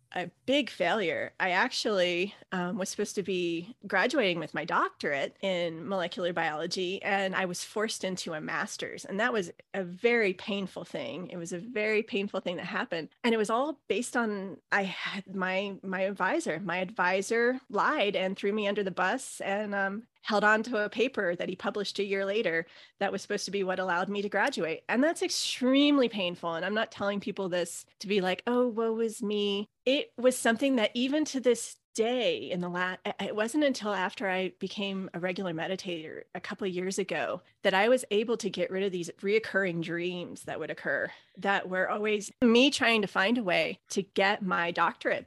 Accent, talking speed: American, 200 wpm